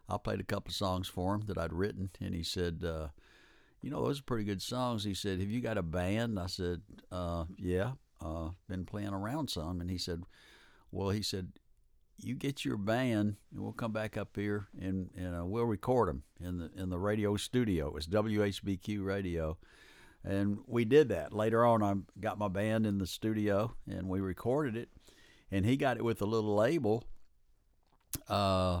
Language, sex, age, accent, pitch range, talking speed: English, male, 60-79, American, 90-110 Hz, 200 wpm